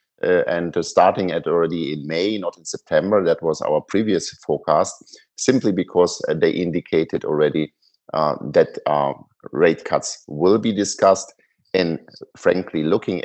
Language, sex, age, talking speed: English, male, 50-69, 150 wpm